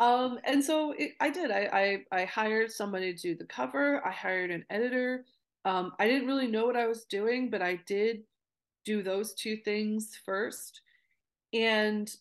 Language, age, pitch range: English, 30-49, 175-235 Hz